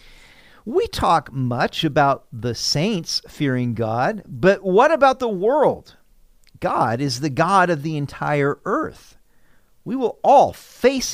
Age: 50-69